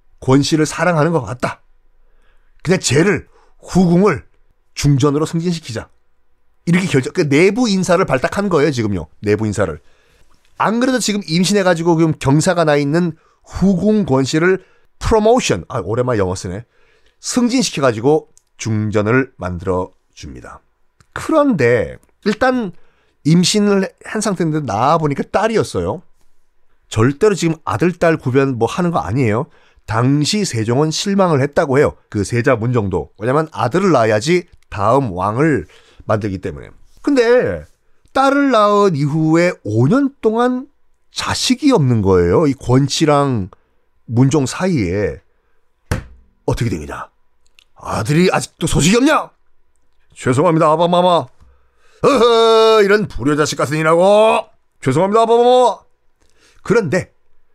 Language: Korean